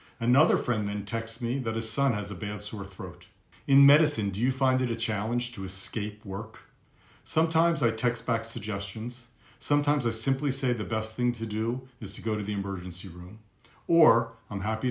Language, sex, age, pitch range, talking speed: English, male, 40-59, 100-125 Hz, 195 wpm